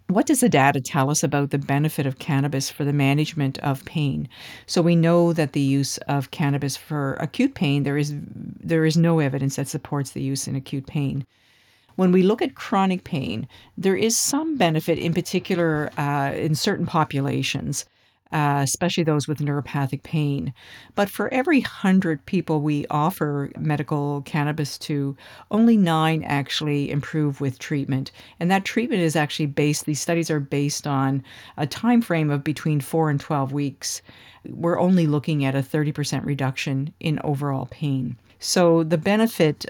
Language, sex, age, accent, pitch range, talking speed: English, female, 50-69, American, 140-165 Hz, 170 wpm